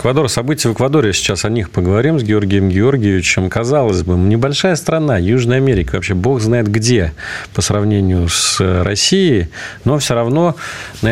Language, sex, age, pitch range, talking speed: Russian, male, 40-59, 90-120 Hz, 150 wpm